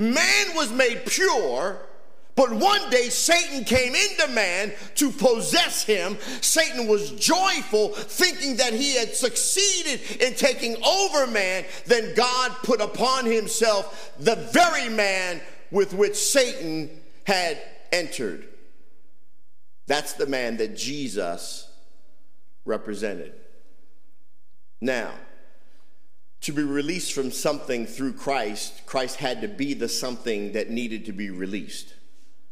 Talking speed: 120 wpm